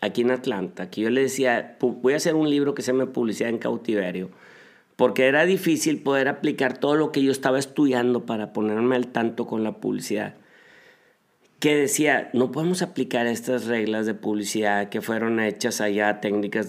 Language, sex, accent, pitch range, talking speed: Spanish, male, Mexican, 110-145 Hz, 180 wpm